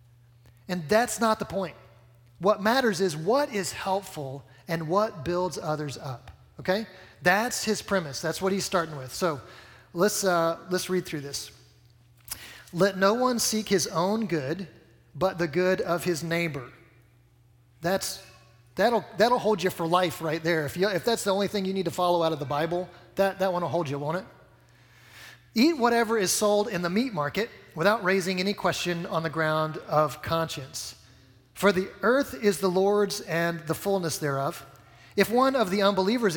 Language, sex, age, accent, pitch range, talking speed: English, male, 30-49, American, 145-200 Hz, 180 wpm